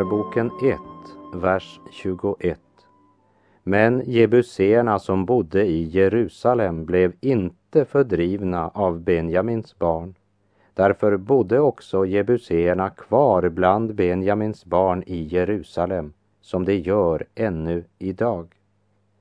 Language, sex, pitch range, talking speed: Portuguese, male, 90-110 Hz, 95 wpm